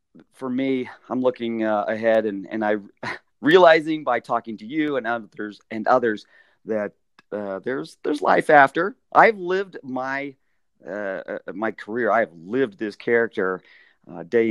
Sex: male